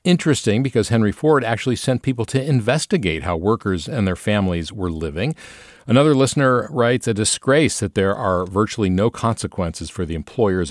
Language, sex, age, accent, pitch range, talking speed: English, male, 50-69, American, 90-120 Hz, 170 wpm